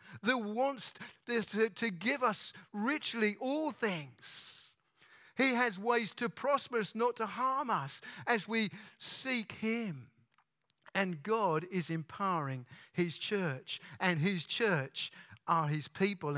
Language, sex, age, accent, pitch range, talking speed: English, male, 50-69, British, 165-210 Hz, 130 wpm